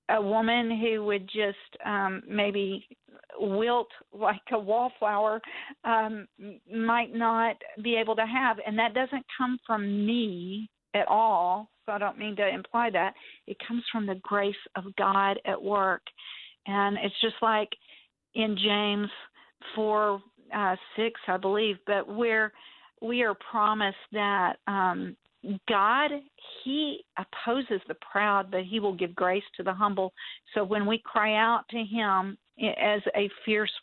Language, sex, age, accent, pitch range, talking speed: English, female, 50-69, American, 195-225 Hz, 145 wpm